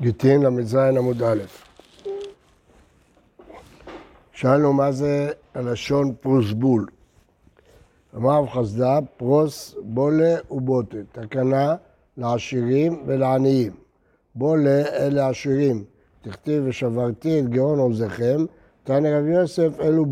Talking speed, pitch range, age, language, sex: 90 wpm, 125-155 Hz, 60-79, Hebrew, male